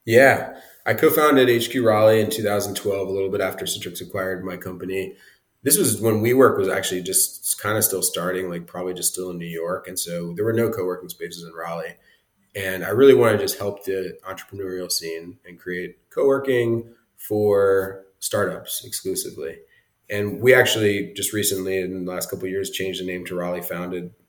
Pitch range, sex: 90-110 Hz, male